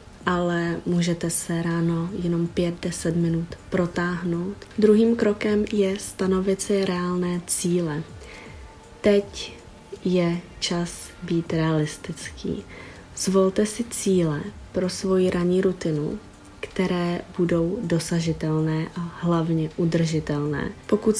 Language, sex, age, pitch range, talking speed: Czech, female, 20-39, 170-185 Hz, 95 wpm